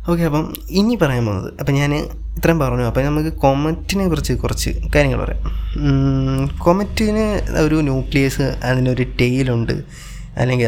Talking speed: 130 wpm